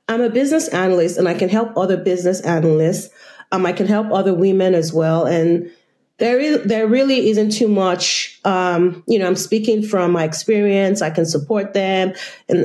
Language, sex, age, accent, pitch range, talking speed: English, female, 30-49, American, 170-215 Hz, 190 wpm